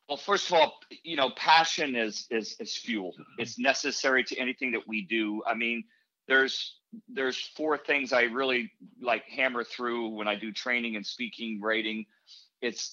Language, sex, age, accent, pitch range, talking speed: English, male, 50-69, American, 115-155 Hz, 170 wpm